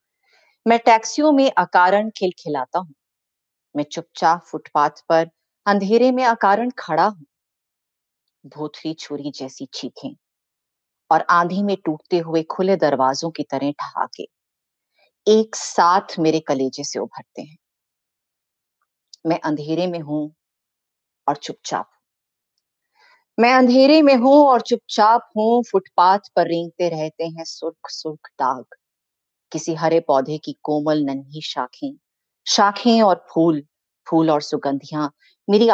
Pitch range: 155-215 Hz